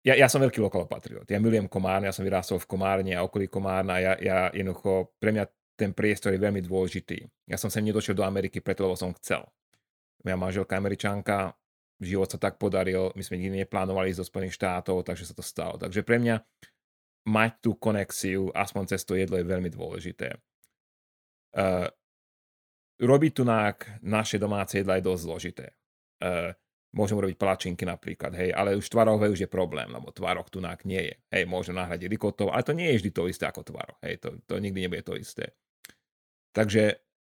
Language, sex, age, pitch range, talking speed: Slovak, male, 30-49, 95-110 Hz, 185 wpm